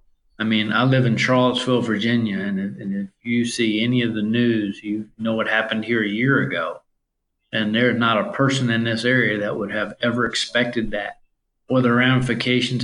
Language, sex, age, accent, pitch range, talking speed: English, male, 50-69, American, 110-125 Hz, 190 wpm